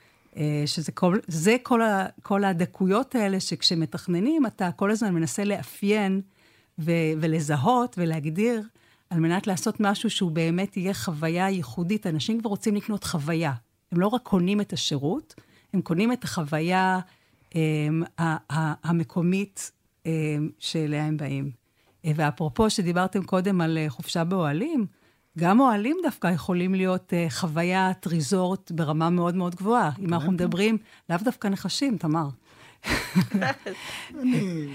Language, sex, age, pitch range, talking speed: Hebrew, female, 50-69, 160-200 Hz, 125 wpm